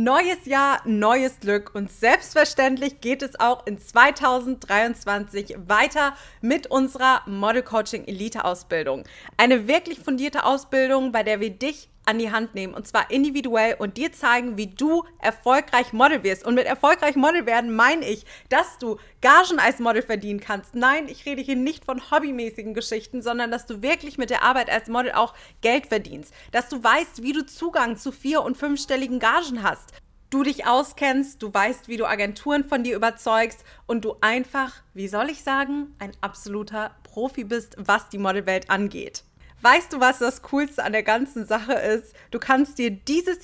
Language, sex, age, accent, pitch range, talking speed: German, female, 30-49, German, 220-275 Hz, 175 wpm